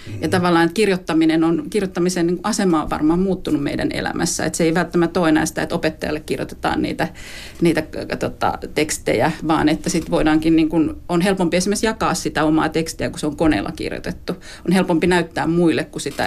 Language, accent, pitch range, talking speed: Finnish, native, 160-185 Hz, 180 wpm